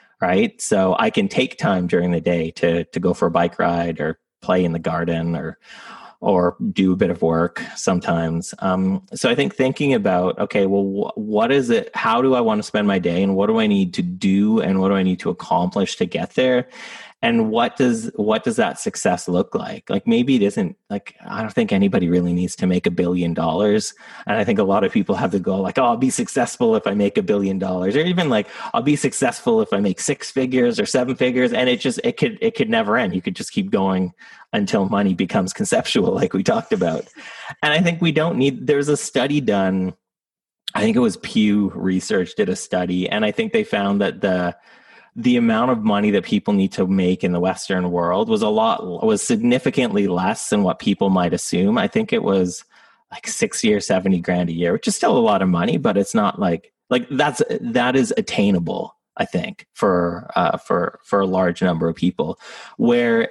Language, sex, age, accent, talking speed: English, male, 30-49, American, 225 wpm